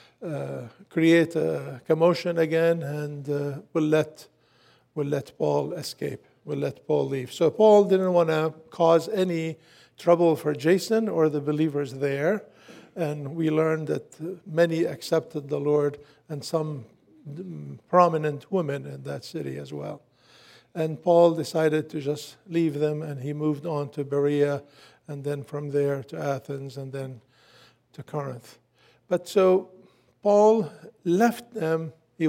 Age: 50-69